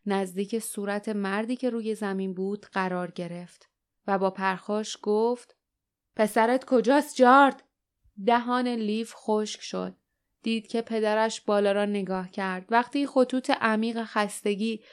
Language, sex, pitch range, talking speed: Persian, female, 205-245 Hz, 125 wpm